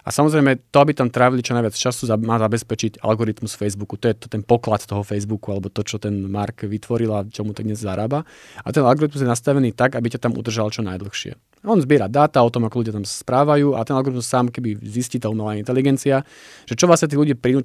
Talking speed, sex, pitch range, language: 230 wpm, male, 115-140 Hz, Slovak